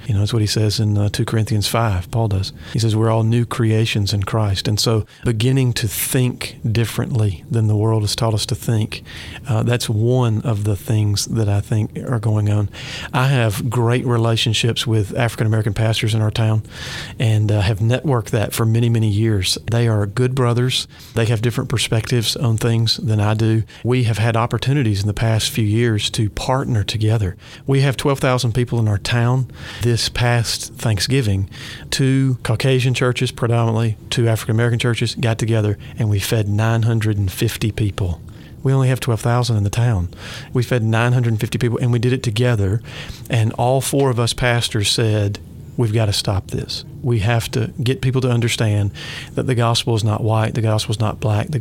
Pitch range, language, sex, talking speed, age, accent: 110-125 Hz, English, male, 190 wpm, 40-59, American